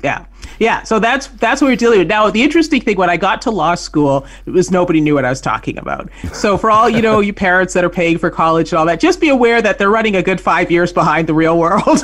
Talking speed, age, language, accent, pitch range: 285 wpm, 40-59, English, American, 155-220 Hz